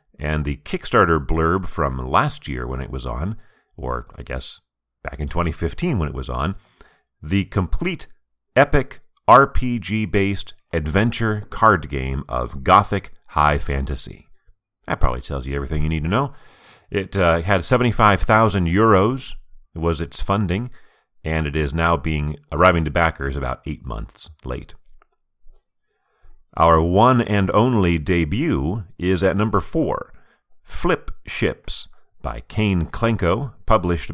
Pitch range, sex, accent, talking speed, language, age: 75-100 Hz, male, American, 135 wpm, English, 40-59